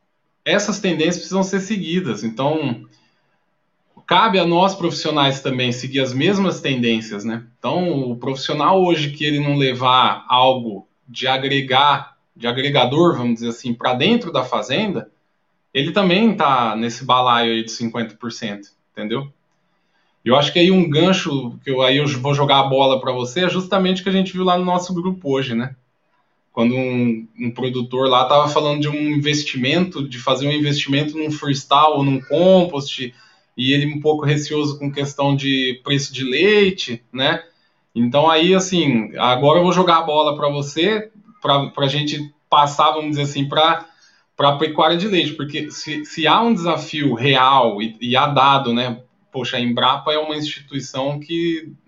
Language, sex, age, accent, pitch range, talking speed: Portuguese, male, 20-39, Brazilian, 130-165 Hz, 165 wpm